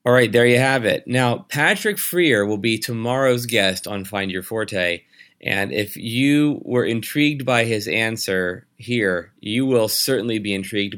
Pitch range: 100-125 Hz